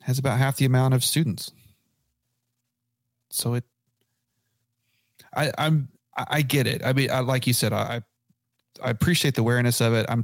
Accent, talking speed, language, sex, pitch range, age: American, 165 wpm, English, male, 110-130 Hz, 30-49